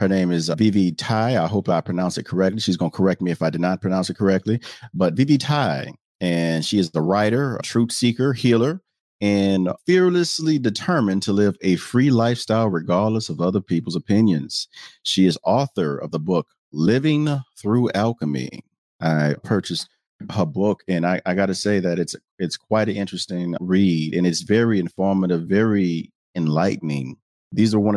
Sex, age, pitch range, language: male, 40-59, 85-110 Hz, English